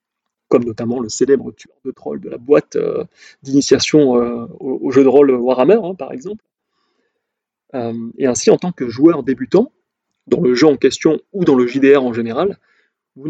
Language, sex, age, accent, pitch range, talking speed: French, male, 30-49, French, 135-215 Hz, 190 wpm